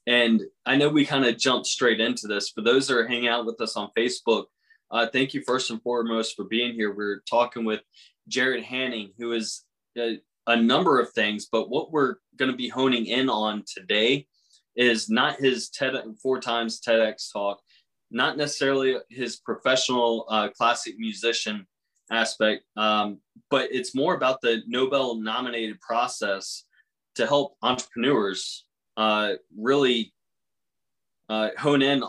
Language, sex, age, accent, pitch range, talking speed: English, male, 20-39, American, 110-130 Hz, 155 wpm